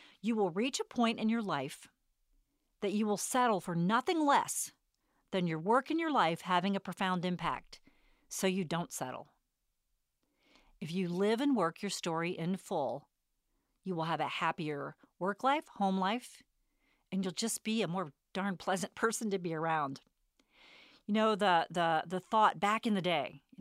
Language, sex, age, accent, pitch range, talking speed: English, female, 40-59, American, 175-255 Hz, 175 wpm